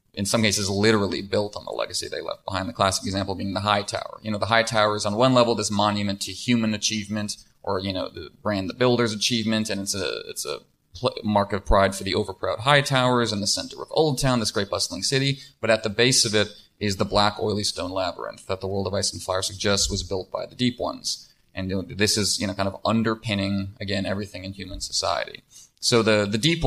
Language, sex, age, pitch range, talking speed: English, male, 30-49, 100-115 Hz, 245 wpm